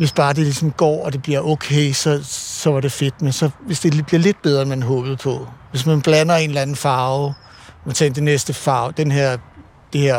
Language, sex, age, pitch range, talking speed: Danish, male, 60-79, 130-155 Hz, 235 wpm